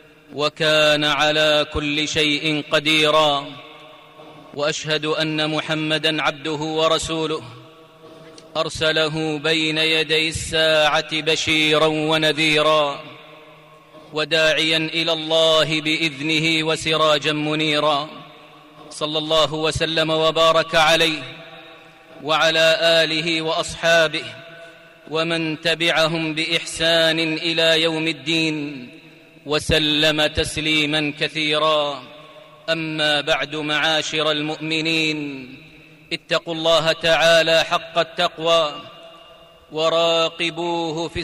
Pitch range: 155-165 Hz